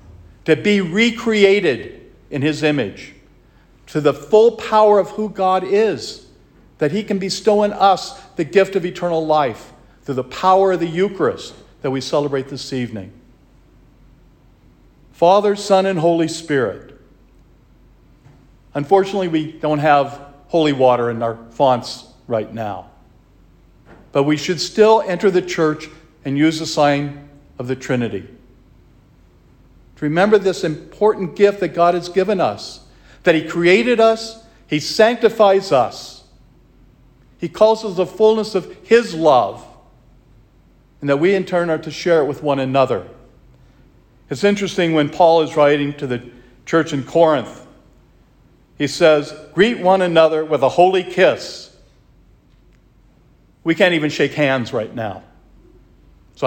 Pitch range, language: 135-190 Hz, English